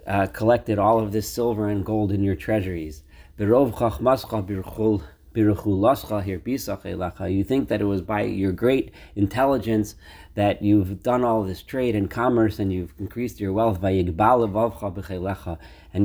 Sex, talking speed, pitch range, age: male, 130 wpm, 95-110 Hz, 40-59